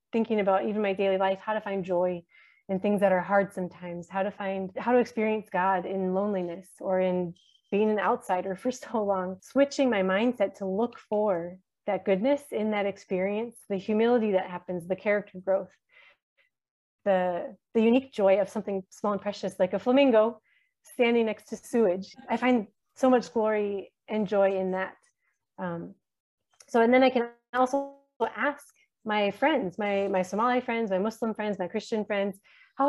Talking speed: 175 wpm